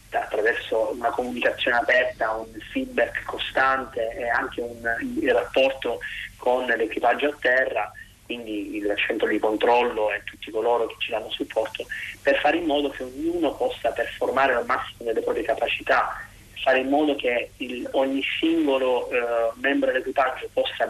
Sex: male